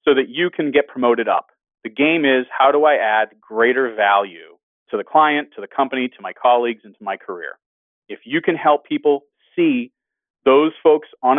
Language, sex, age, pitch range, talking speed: English, male, 40-59, 125-190 Hz, 200 wpm